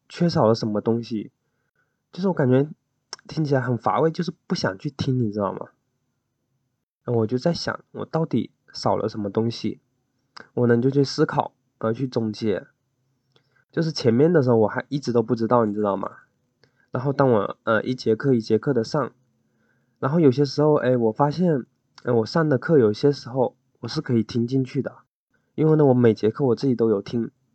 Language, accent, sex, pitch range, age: Chinese, native, male, 115-145 Hz, 20-39